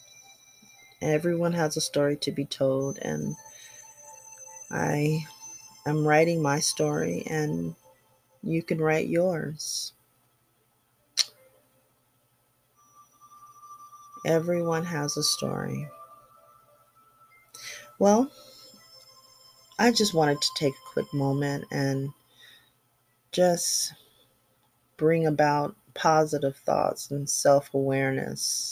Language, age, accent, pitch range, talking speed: English, 30-49, American, 130-160 Hz, 80 wpm